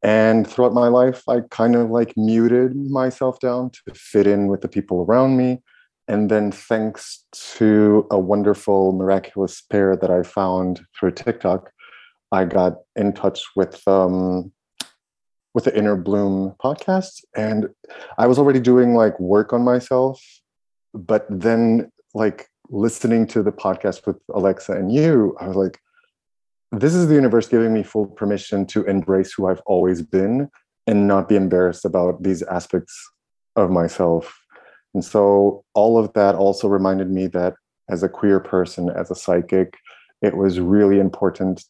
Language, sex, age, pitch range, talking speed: English, male, 30-49, 95-115 Hz, 155 wpm